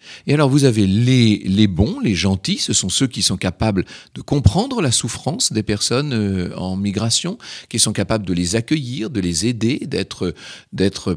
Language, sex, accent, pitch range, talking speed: French, male, French, 105-155 Hz, 185 wpm